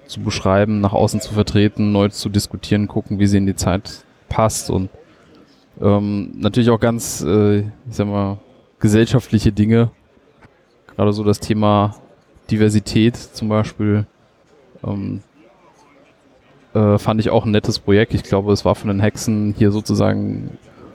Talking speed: 145 wpm